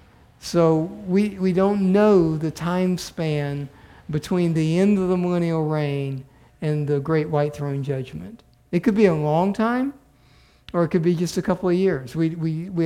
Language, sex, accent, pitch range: English, male, American, 140-175 Hz